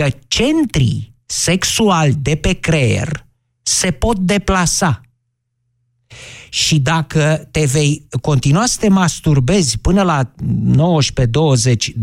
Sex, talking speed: male, 100 wpm